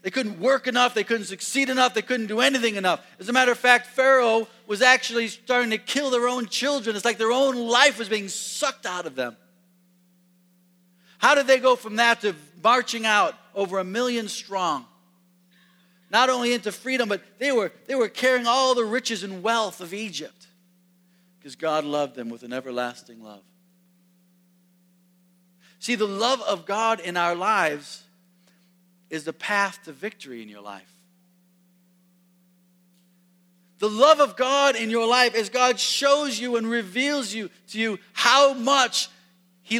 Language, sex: English, male